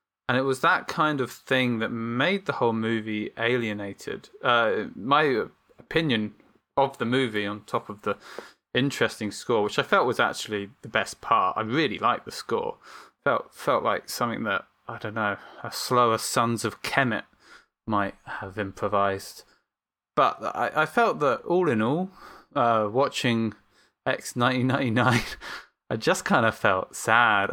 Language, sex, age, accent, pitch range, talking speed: English, male, 20-39, British, 110-130 Hz, 155 wpm